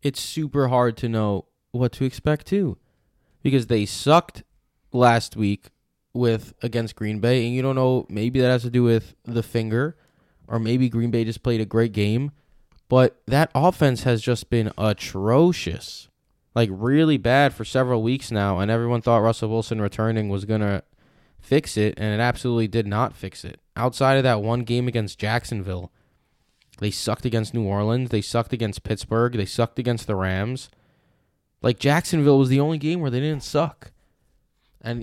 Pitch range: 105-125 Hz